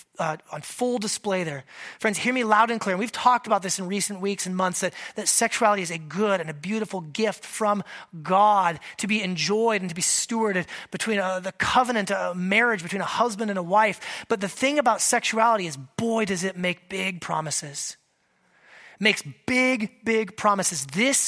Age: 30-49